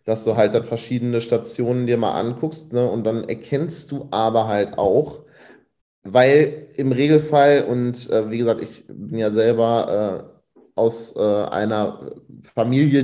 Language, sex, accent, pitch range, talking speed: German, male, German, 115-140 Hz, 150 wpm